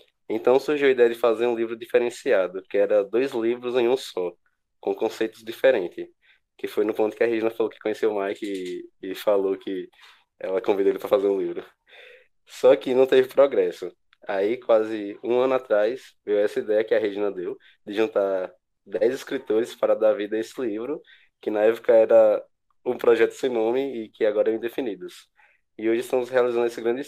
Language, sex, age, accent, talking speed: Portuguese, male, 20-39, Brazilian, 195 wpm